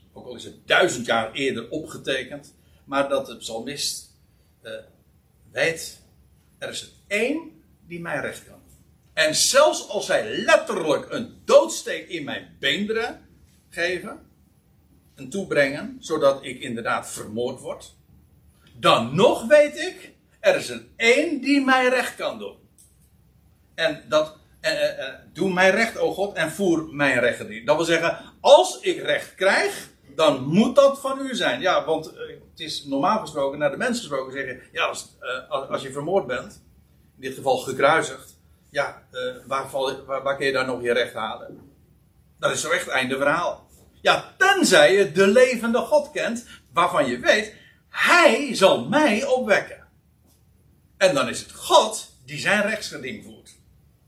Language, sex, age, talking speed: Dutch, male, 60-79, 165 wpm